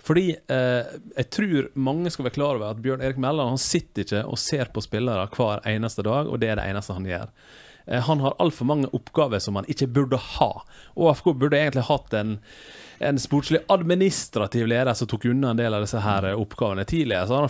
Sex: male